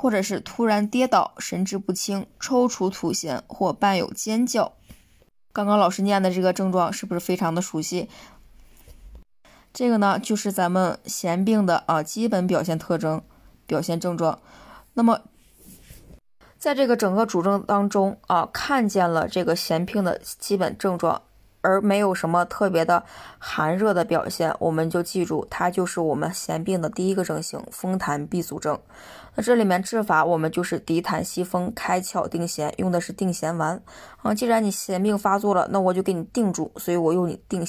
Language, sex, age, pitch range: Chinese, female, 20-39, 170-205 Hz